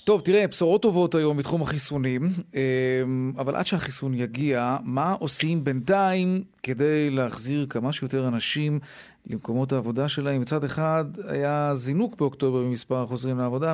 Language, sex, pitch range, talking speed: Hebrew, male, 130-175 Hz, 130 wpm